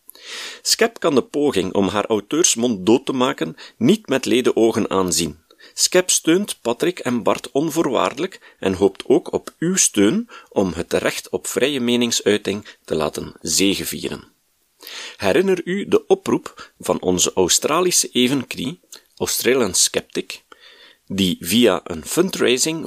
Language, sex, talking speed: Dutch, male, 130 wpm